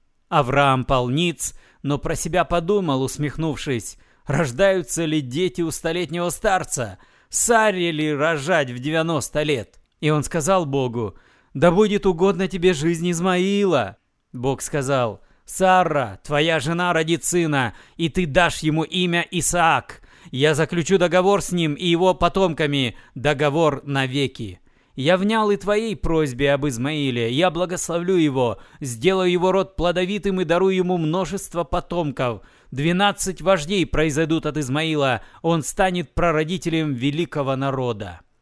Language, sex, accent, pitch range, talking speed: Russian, male, native, 140-175 Hz, 125 wpm